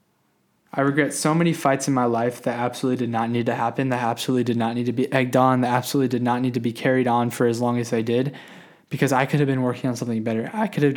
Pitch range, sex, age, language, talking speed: 120-140 Hz, male, 20-39, English, 280 wpm